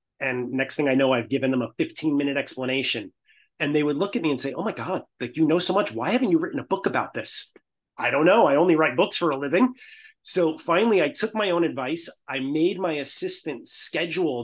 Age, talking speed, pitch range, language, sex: 30-49, 240 wpm, 135-175 Hz, English, male